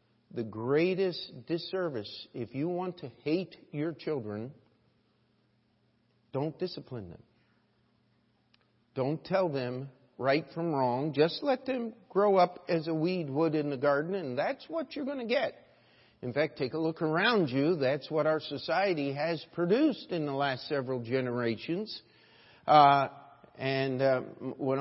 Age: 50-69